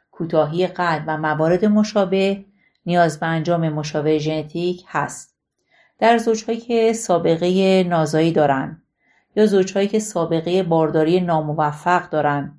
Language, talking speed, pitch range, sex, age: Persian, 115 wpm, 155-195 Hz, female, 40-59